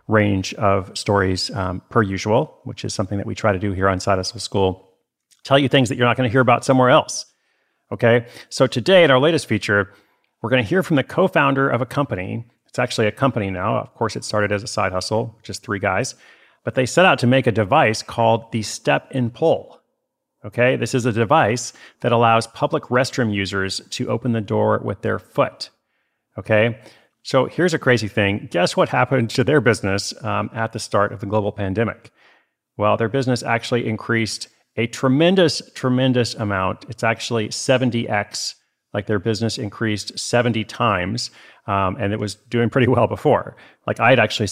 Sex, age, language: male, 40-59, English